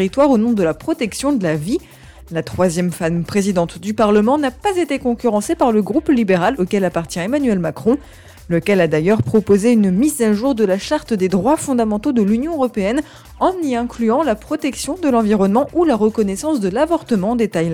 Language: French